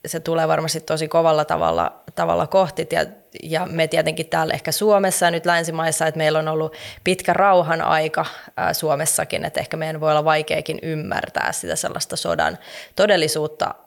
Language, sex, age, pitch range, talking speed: Finnish, female, 20-39, 155-175 Hz, 165 wpm